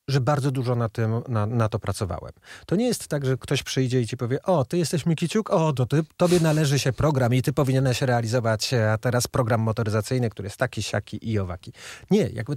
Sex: male